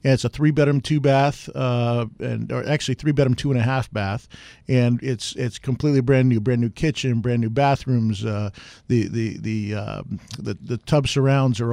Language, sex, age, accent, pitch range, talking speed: English, male, 50-69, American, 120-135 Hz, 160 wpm